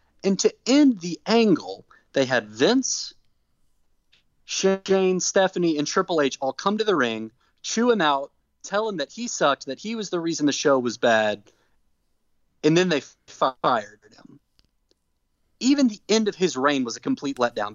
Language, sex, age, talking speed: English, male, 30-49, 170 wpm